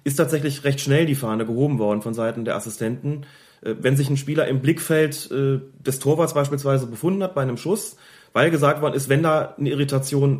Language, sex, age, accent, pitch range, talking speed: German, male, 30-49, German, 130-155 Hz, 195 wpm